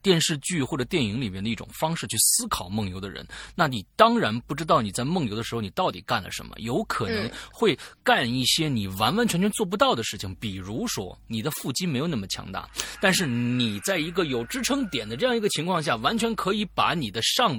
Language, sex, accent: Chinese, male, native